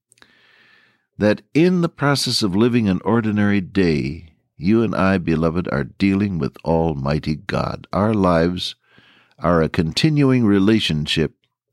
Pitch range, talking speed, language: 90-120 Hz, 125 wpm, English